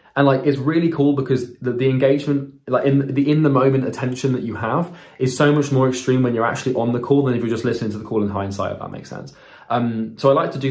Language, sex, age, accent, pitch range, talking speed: English, male, 20-39, British, 115-135 Hz, 280 wpm